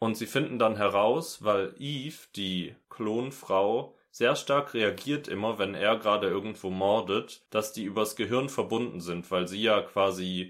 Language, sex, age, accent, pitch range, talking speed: German, male, 30-49, German, 95-115 Hz, 160 wpm